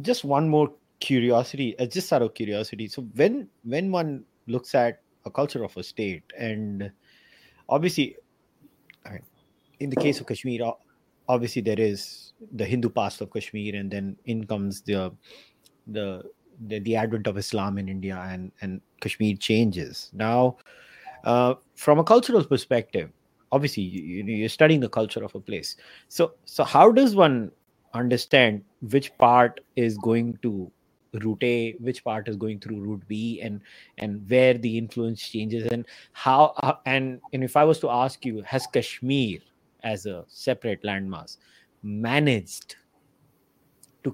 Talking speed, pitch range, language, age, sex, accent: 150 wpm, 105-130 Hz, English, 30-49, male, Indian